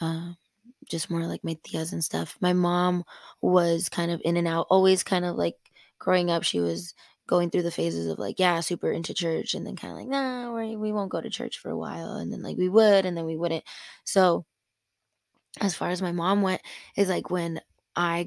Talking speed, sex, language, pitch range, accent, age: 220 wpm, female, English, 175-220 Hz, American, 20-39